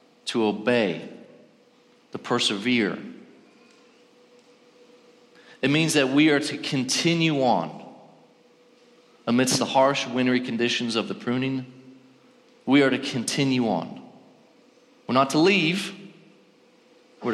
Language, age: English, 40-59